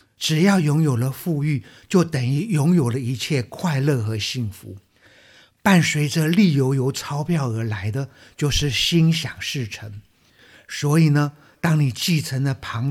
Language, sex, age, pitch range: Chinese, male, 50-69, 110-160 Hz